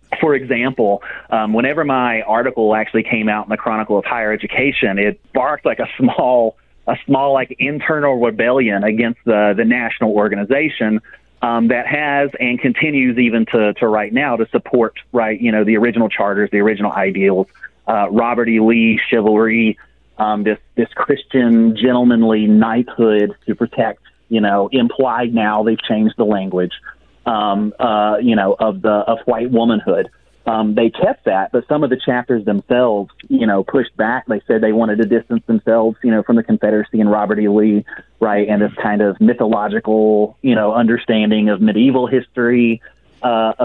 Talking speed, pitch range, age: 170 wpm, 105-120 Hz, 30-49